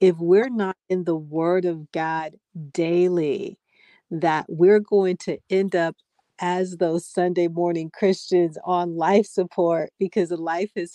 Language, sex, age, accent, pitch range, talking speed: English, female, 40-59, American, 165-190 Hz, 140 wpm